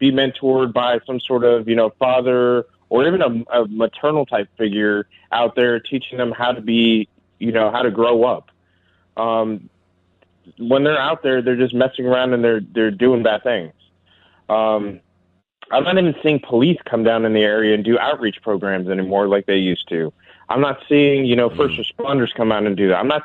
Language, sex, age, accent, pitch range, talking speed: English, male, 20-39, American, 100-125 Hz, 200 wpm